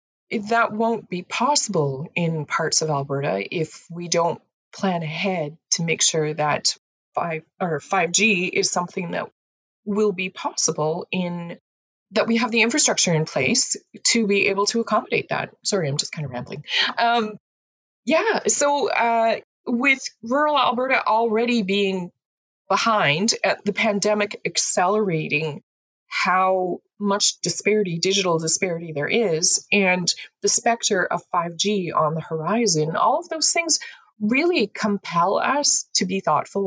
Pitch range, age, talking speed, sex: 165-230 Hz, 20-39, 145 wpm, female